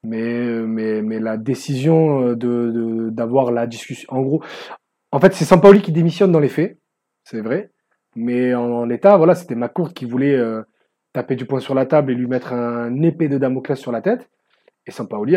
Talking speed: 200 wpm